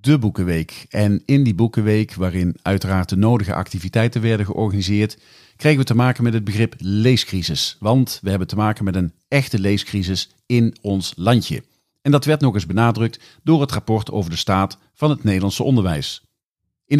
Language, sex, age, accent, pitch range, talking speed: Dutch, male, 40-59, Dutch, 105-135 Hz, 175 wpm